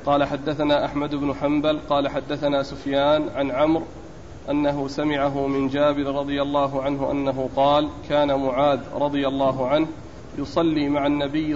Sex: male